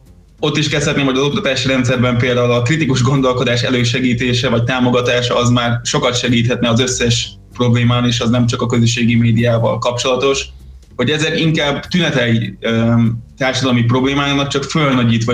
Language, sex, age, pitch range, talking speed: Hungarian, male, 20-39, 120-135 Hz, 145 wpm